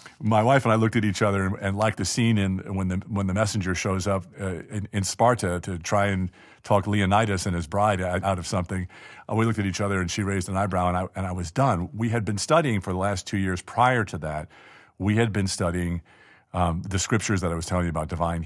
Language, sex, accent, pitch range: English, male, American, 85-105 Hz